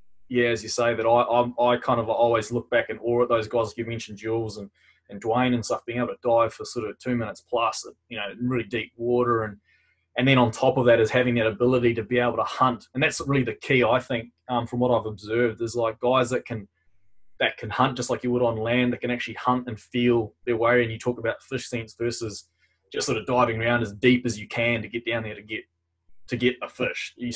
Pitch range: 110-120 Hz